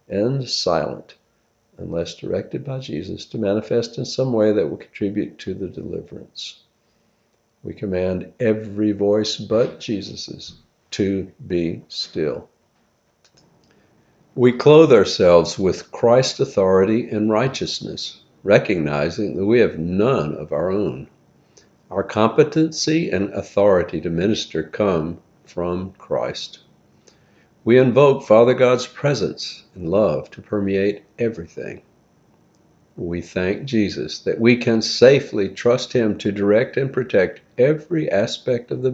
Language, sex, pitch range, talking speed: English, male, 95-125 Hz, 120 wpm